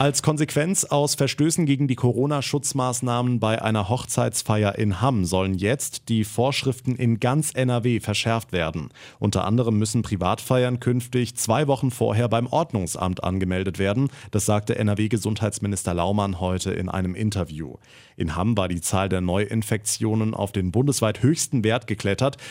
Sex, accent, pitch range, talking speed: male, German, 100-125 Hz, 145 wpm